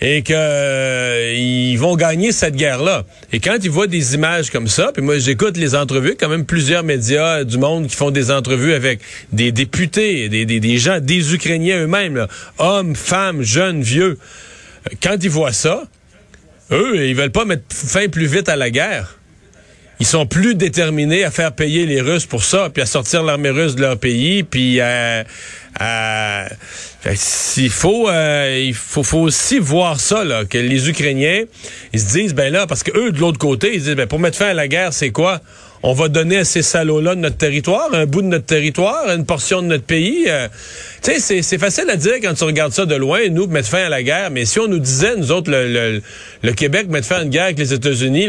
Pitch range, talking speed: 130-170 Hz, 220 wpm